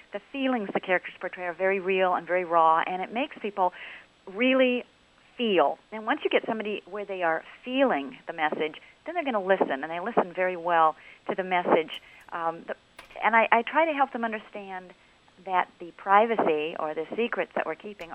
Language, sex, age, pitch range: English, female, 40-59, 170-220 Hz